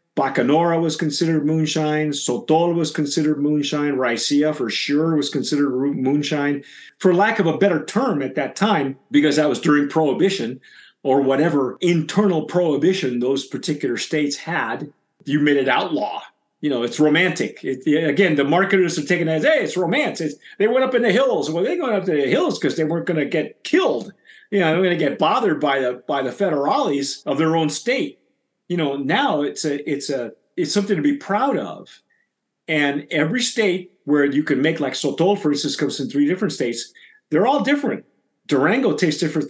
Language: English